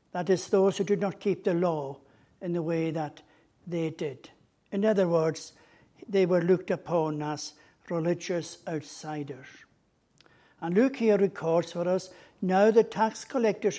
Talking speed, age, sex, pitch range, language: 150 wpm, 60-79, male, 160-195 Hz, English